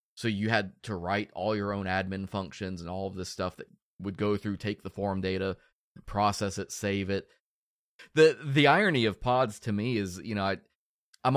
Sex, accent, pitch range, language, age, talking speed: male, American, 95-120 Hz, English, 20-39, 200 wpm